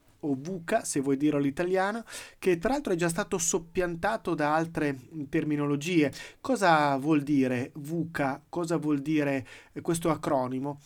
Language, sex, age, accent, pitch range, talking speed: Italian, male, 30-49, native, 150-195 Hz, 140 wpm